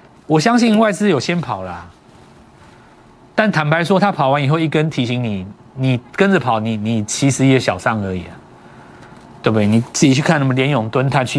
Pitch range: 125-200 Hz